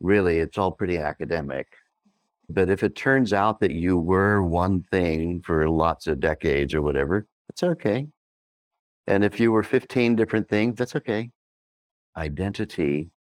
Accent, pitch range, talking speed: American, 75-100 Hz, 150 wpm